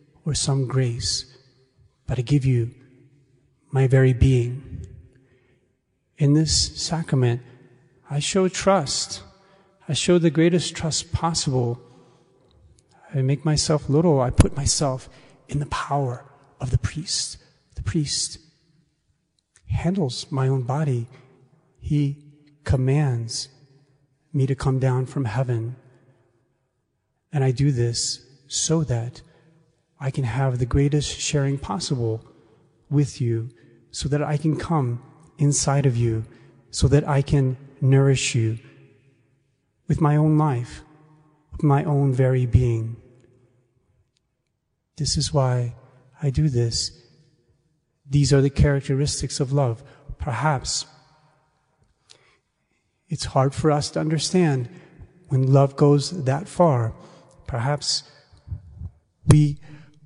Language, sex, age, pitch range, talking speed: English, male, 30-49, 125-150 Hz, 115 wpm